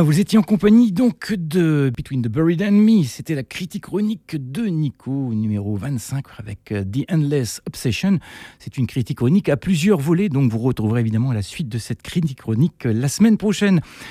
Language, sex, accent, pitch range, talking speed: French, male, French, 115-160 Hz, 185 wpm